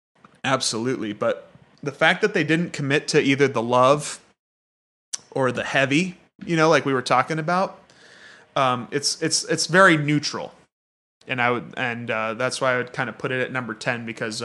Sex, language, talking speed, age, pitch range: male, English, 185 wpm, 30-49, 130-155 Hz